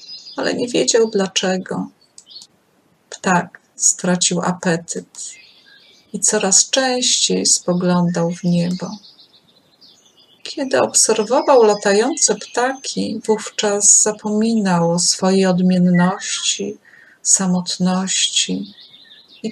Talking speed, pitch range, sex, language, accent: 75 wpm, 180-260 Hz, female, Polish, native